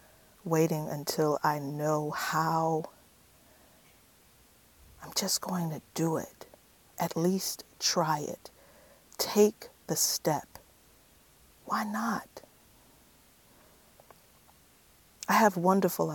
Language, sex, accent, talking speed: English, female, American, 85 wpm